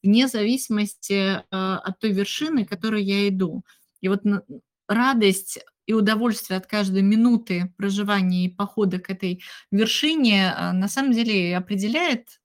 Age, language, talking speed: 20-39, Russian, 130 wpm